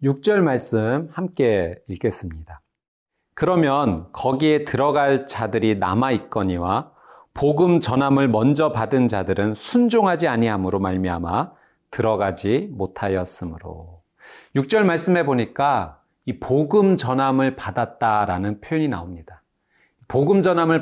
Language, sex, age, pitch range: Korean, male, 40-59, 105-155 Hz